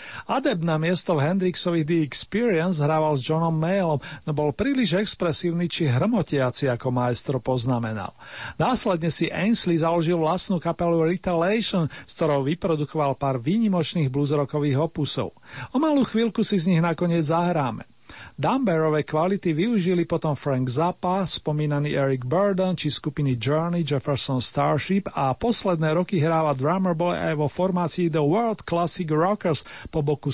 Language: Slovak